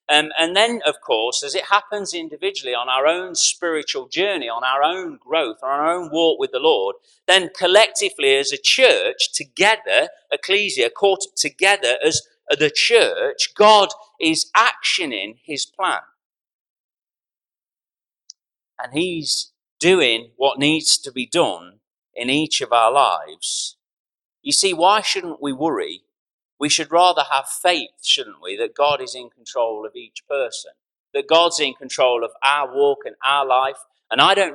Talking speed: 155 wpm